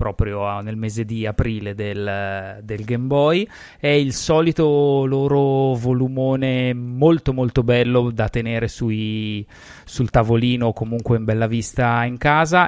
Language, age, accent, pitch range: Italian, 20-39, native, 105-125 Hz